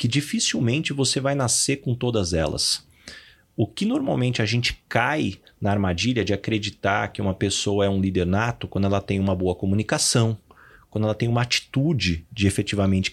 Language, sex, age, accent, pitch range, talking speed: Portuguese, male, 30-49, Brazilian, 105-150 Hz, 175 wpm